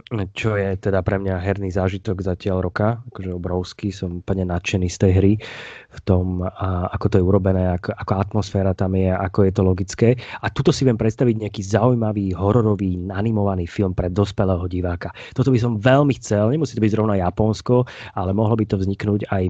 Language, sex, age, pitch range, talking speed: Slovak, male, 20-39, 95-115 Hz, 190 wpm